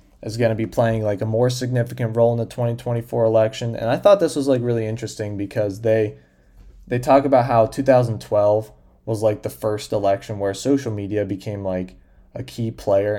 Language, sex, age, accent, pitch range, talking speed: English, male, 20-39, American, 95-115 Hz, 190 wpm